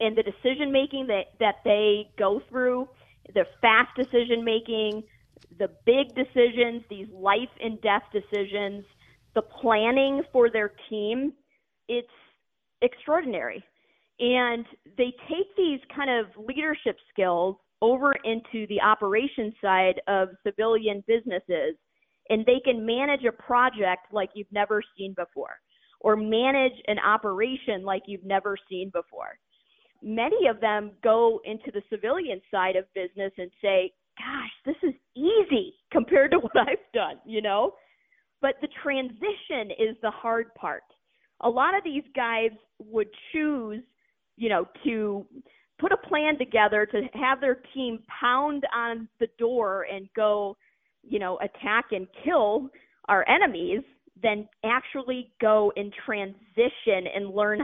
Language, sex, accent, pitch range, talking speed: English, female, American, 205-255 Hz, 135 wpm